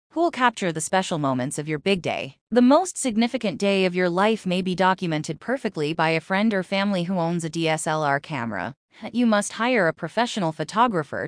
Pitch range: 170-235 Hz